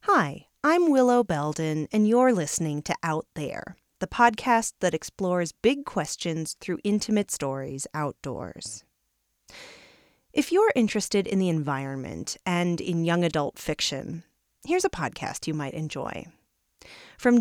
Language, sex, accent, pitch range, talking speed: English, female, American, 155-215 Hz, 130 wpm